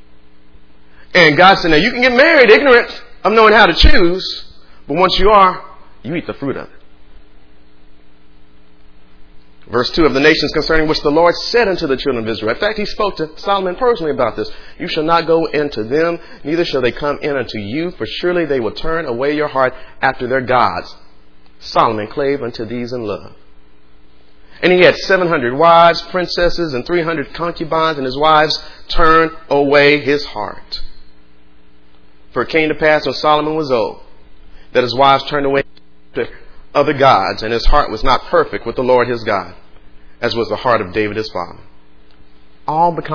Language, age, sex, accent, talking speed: English, 40-59, male, American, 185 wpm